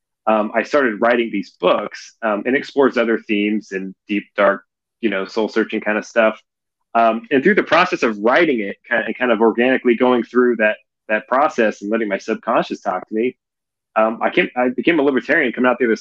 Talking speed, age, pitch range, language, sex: 215 wpm, 20-39, 100-120 Hz, English, male